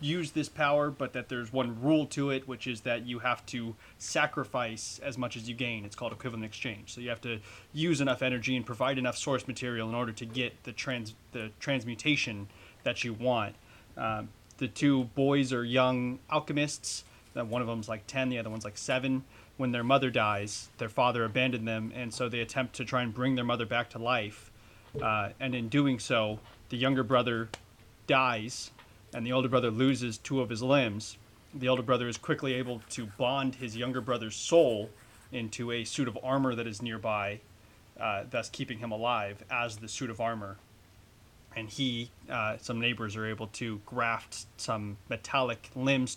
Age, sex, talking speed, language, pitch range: 30-49, male, 190 wpm, English, 110-130 Hz